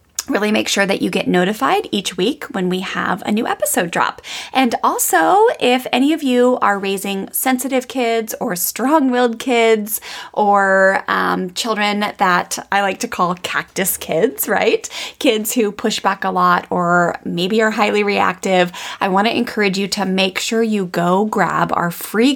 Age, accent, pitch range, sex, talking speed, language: 20-39, American, 180-230 Hz, female, 170 wpm, English